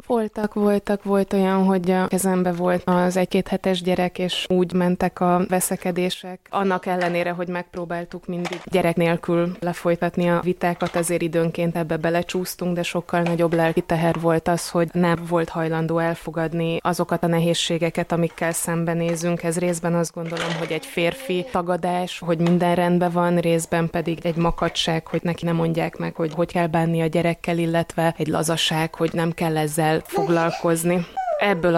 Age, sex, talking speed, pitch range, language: 20-39, female, 155 wpm, 165-180 Hz, Hungarian